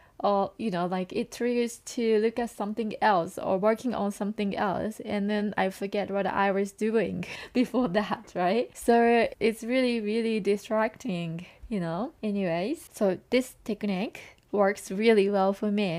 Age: 20-39